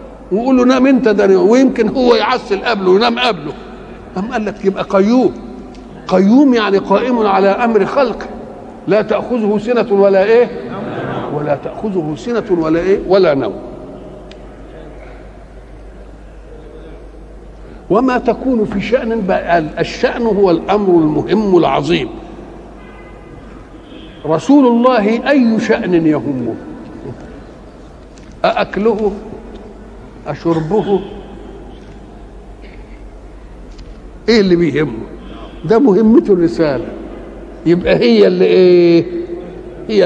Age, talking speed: 60-79, 95 wpm